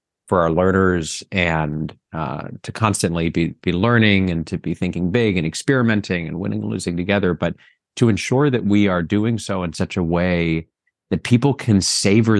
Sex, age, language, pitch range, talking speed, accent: male, 30-49, English, 90-110 Hz, 185 wpm, American